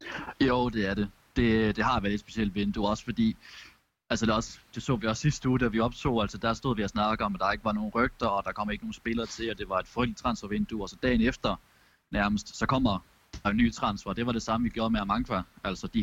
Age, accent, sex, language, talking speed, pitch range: 20-39, native, male, Danish, 275 wpm, 100-120 Hz